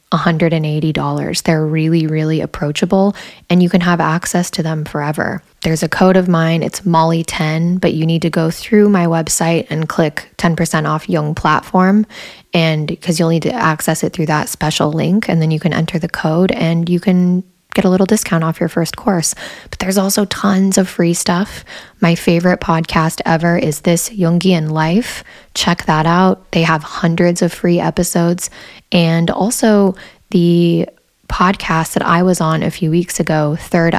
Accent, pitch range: American, 160-180 Hz